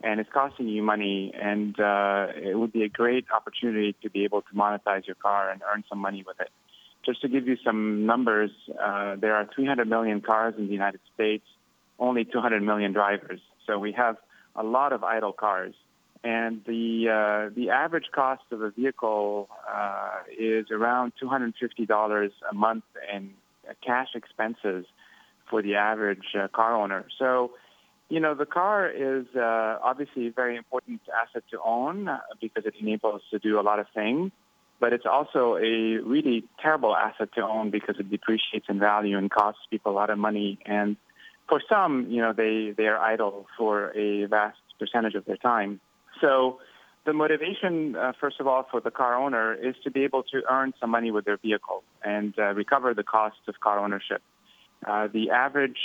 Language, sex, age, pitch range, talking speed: English, male, 30-49, 105-120 Hz, 185 wpm